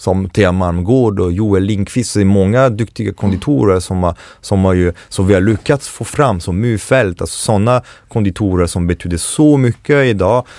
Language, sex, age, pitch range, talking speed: English, male, 30-49, 90-110 Hz, 140 wpm